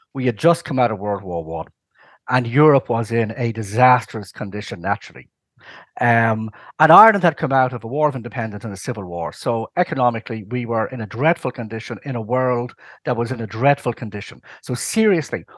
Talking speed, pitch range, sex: 195 wpm, 115-150 Hz, male